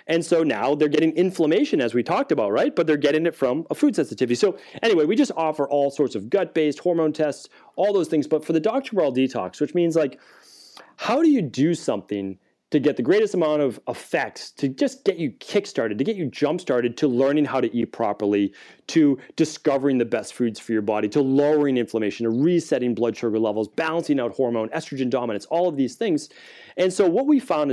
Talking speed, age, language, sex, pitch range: 215 wpm, 30-49, English, male, 120-170 Hz